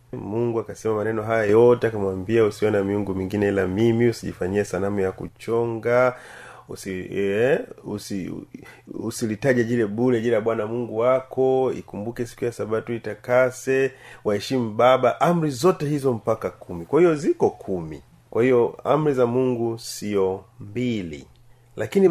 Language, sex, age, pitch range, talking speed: Swahili, male, 30-49, 105-135 Hz, 140 wpm